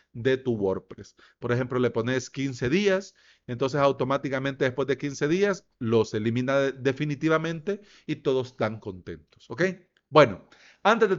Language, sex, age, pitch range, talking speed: Spanish, male, 40-59, 120-160 Hz, 140 wpm